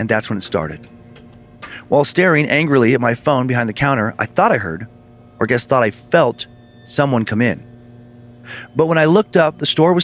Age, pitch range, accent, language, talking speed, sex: 40-59, 115-135 Hz, American, English, 205 wpm, male